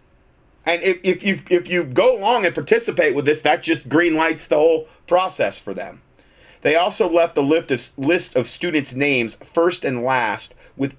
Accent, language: American, English